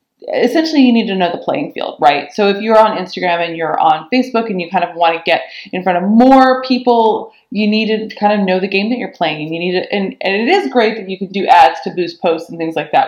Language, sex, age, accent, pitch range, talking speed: English, female, 20-39, American, 175-240 Hz, 280 wpm